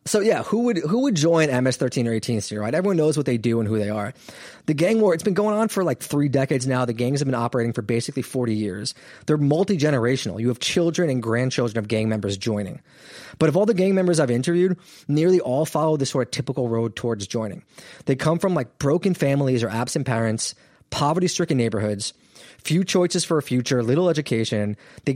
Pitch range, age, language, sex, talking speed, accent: 120-165 Hz, 20-39, English, male, 215 wpm, American